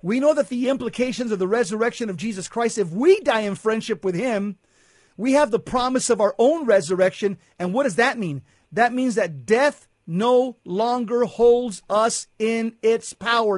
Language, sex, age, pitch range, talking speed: English, male, 50-69, 200-255 Hz, 185 wpm